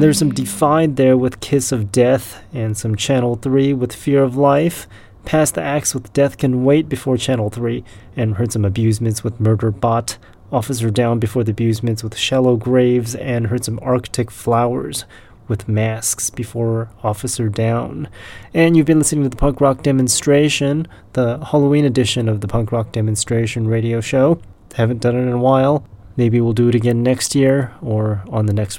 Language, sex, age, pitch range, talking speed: English, male, 30-49, 110-130 Hz, 180 wpm